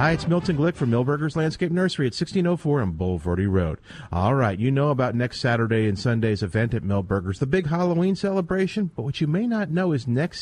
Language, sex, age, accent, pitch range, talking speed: English, male, 40-59, American, 110-170 Hz, 215 wpm